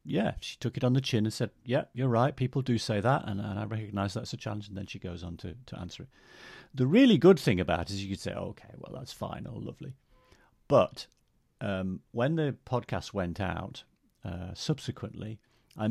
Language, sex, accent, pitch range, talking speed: English, male, British, 100-130 Hz, 225 wpm